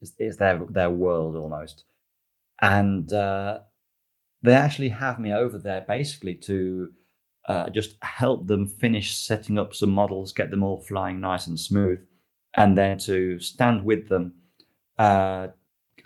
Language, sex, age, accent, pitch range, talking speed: English, male, 30-49, British, 90-105 Hz, 140 wpm